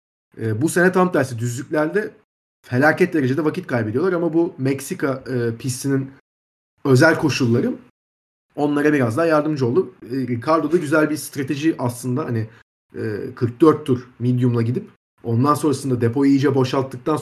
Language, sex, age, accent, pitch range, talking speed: Turkish, male, 40-59, native, 120-160 Hz, 140 wpm